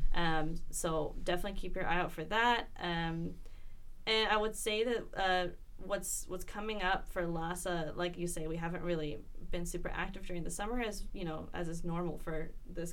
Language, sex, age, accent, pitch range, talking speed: English, female, 20-39, American, 160-185 Hz, 195 wpm